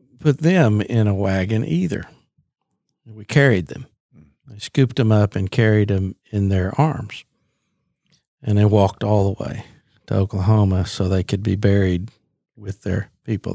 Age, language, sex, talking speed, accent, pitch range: 50-69, English, male, 155 wpm, American, 95-115 Hz